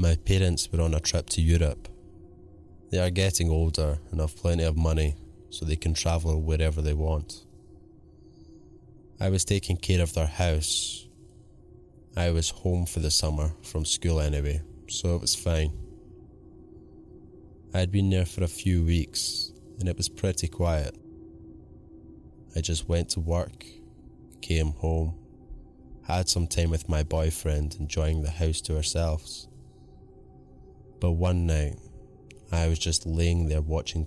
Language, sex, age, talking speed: English, male, 20-39, 150 wpm